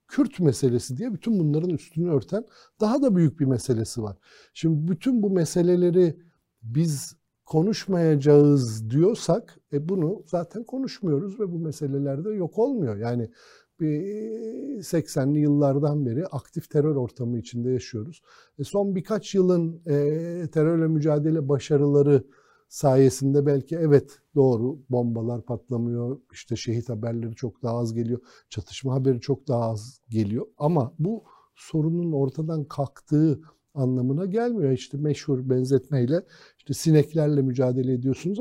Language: Turkish